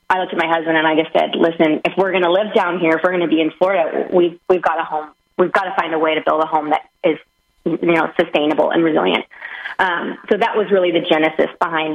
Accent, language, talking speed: American, English, 270 wpm